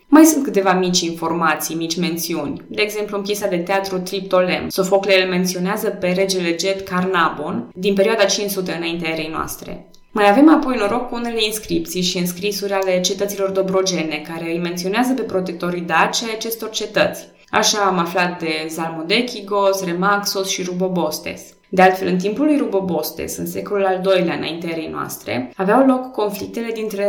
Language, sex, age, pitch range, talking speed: Romanian, female, 20-39, 175-215 Hz, 160 wpm